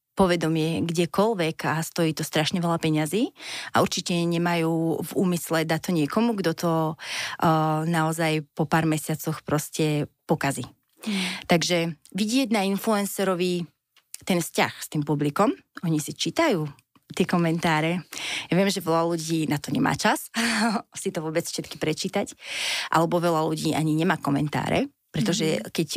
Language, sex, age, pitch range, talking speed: Slovak, female, 30-49, 155-175 Hz, 140 wpm